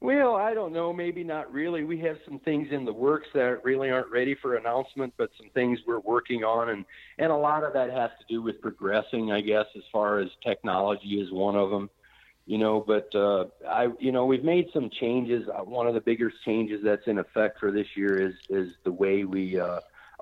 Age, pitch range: 50-69, 100-130 Hz